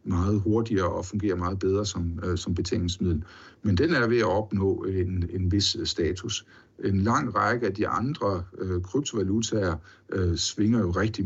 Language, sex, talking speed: Danish, male, 170 wpm